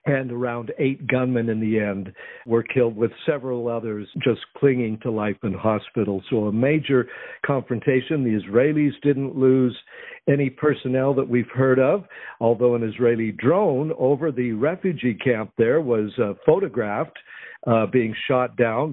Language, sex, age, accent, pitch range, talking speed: English, male, 50-69, American, 110-130 Hz, 150 wpm